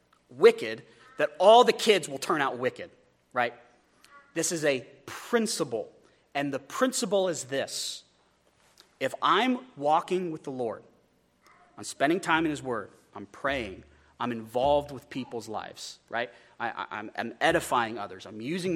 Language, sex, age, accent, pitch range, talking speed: English, male, 30-49, American, 135-220 Hz, 145 wpm